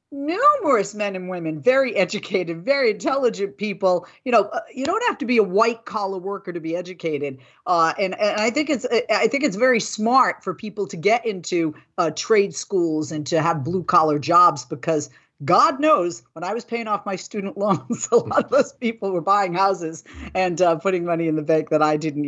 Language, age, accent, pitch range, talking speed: English, 40-59, American, 160-210 Hz, 205 wpm